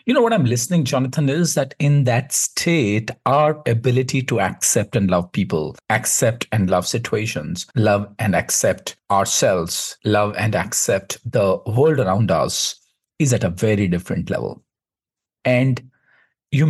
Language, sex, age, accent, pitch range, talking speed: Hindi, male, 50-69, native, 100-145 Hz, 150 wpm